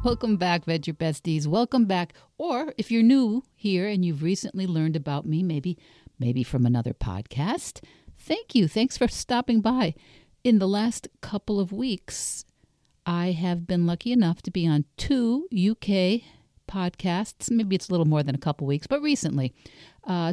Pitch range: 145-200 Hz